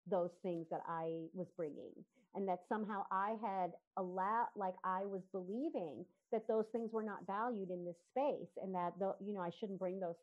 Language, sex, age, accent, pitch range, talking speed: English, female, 40-59, American, 185-235 Hz, 200 wpm